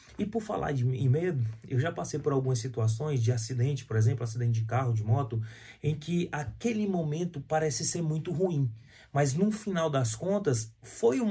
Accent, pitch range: Brazilian, 130-180 Hz